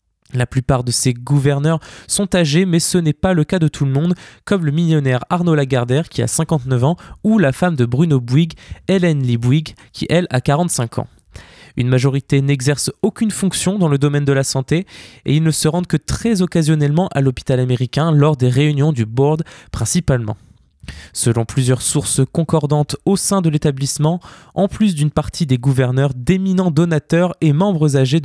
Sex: male